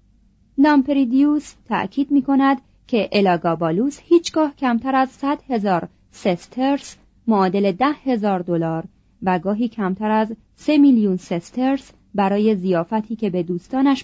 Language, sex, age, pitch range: Persian, female, 30-49, 185-265 Hz